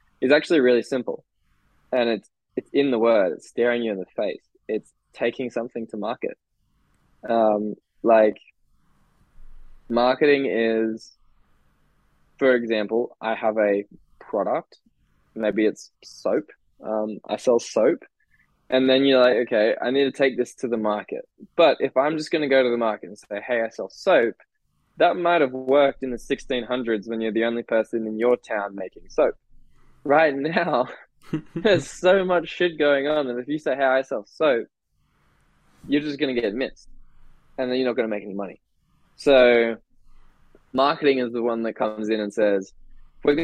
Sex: male